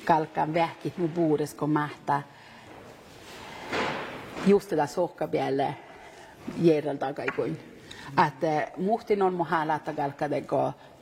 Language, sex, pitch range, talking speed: Finnish, female, 170-225 Hz, 105 wpm